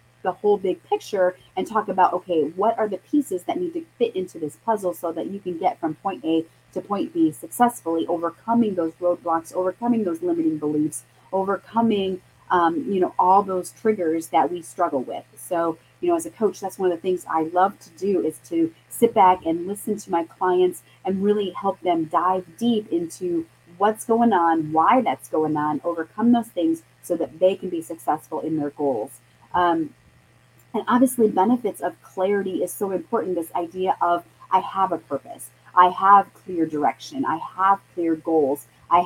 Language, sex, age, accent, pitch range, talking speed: English, female, 30-49, American, 165-200 Hz, 190 wpm